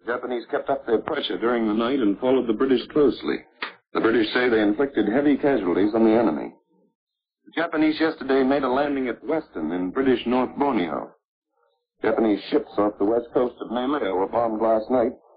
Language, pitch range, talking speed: English, 110-135 Hz, 185 wpm